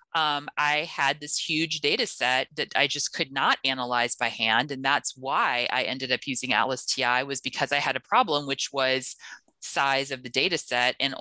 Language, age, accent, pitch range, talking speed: English, 30-49, American, 130-170 Hz, 205 wpm